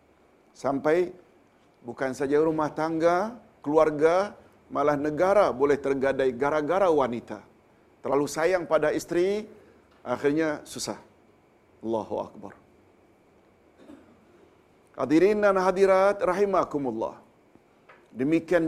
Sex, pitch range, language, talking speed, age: male, 140-175 Hz, Malayalam, 80 wpm, 50-69